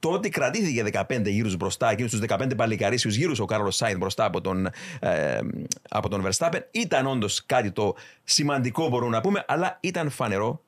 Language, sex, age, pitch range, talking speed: Greek, male, 30-49, 105-130 Hz, 170 wpm